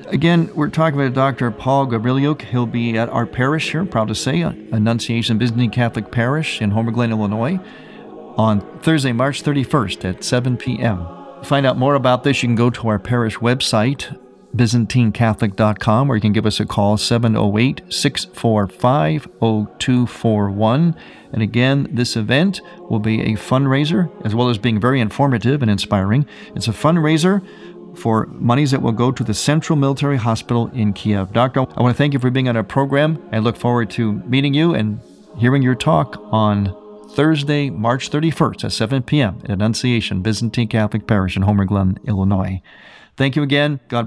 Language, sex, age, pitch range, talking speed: English, male, 50-69, 110-140 Hz, 170 wpm